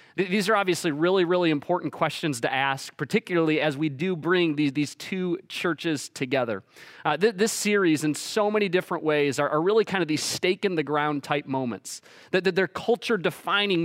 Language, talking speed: English, 180 wpm